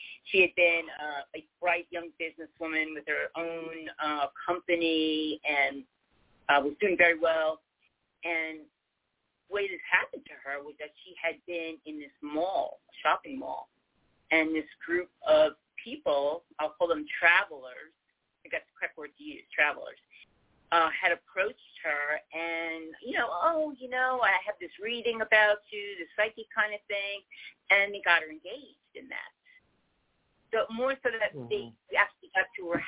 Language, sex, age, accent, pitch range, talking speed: English, female, 40-59, American, 155-200 Hz, 165 wpm